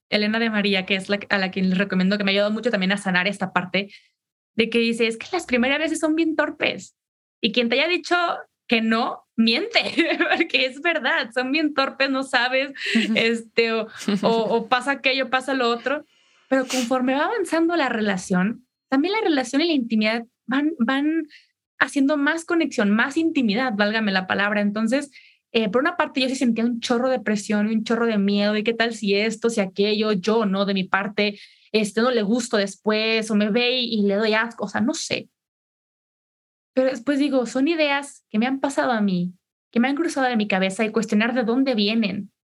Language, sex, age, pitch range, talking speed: Spanish, female, 20-39, 215-270 Hz, 210 wpm